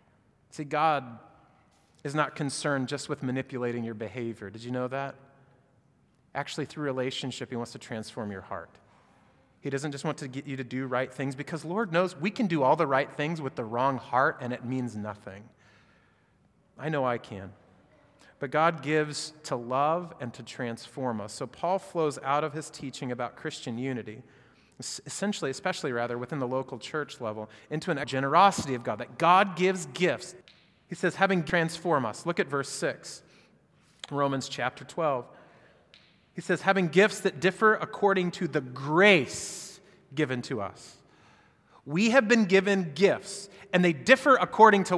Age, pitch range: 30-49, 130-175 Hz